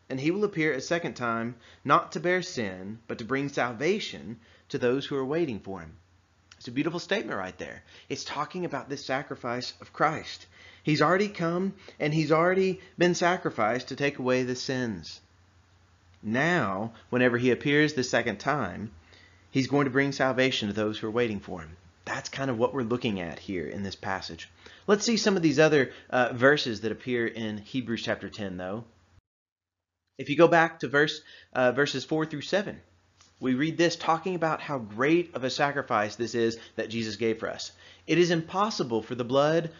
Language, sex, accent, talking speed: English, male, American, 190 wpm